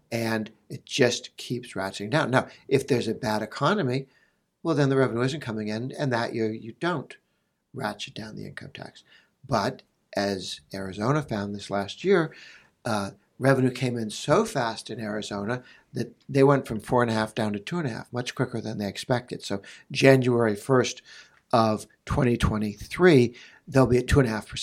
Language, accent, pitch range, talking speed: English, American, 105-130 Hz, 150 wpm